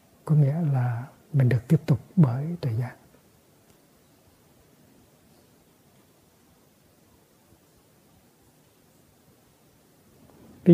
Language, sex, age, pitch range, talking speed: Vietnamese, male, 60-79, 130-160 Hz, 60 wpm